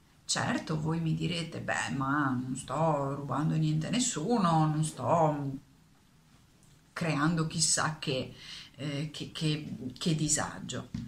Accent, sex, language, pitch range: native, female, Italian, 140-165 Hz